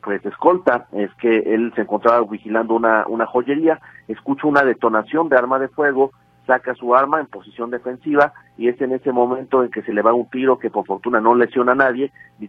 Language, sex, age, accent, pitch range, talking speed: Spanish, male, 40-59, Mexican, 110-135 Hz, 210 wpm